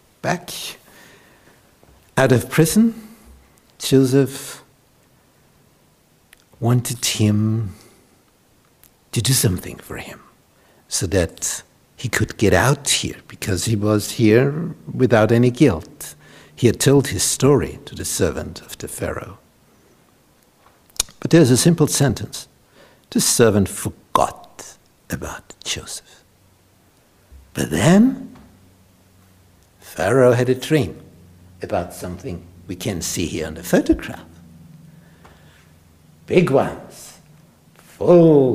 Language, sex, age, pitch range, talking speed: English, male, 60-79, 95-135 Hz, 100 wpm